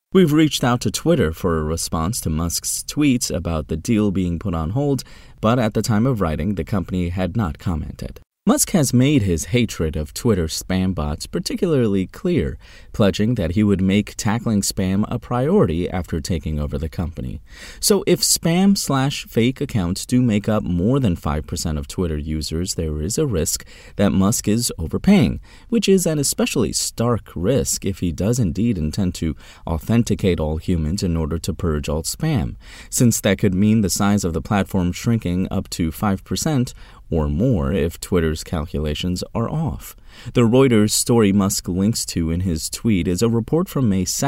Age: 30-49